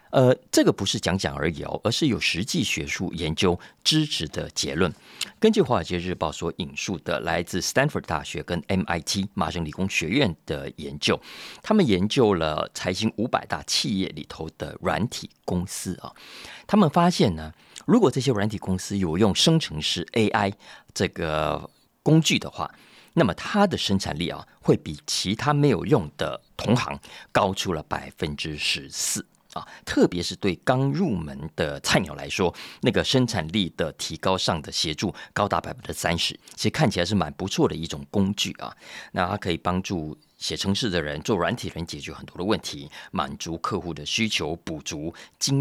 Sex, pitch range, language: male, 85-140 Hz, Chinese